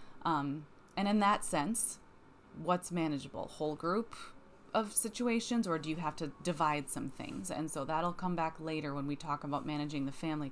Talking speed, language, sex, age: 185 wpm, English, female, 20-39